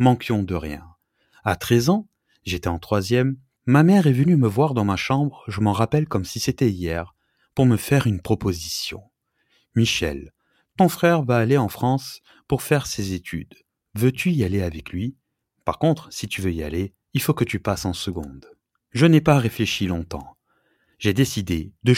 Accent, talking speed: French, 185 wpm